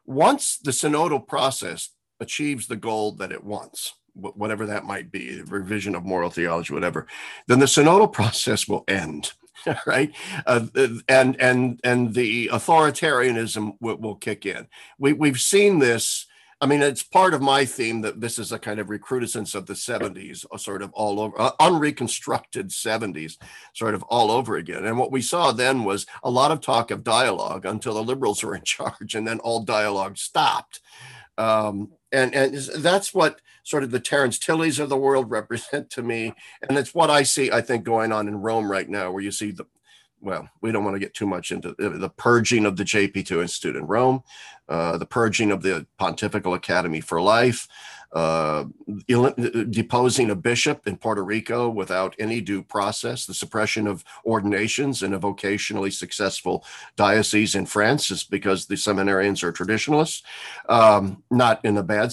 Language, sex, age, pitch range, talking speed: English, male, 50-69, 100-130 Hz, 175 wpm